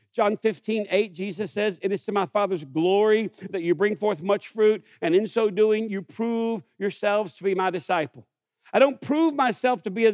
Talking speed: 205 wpm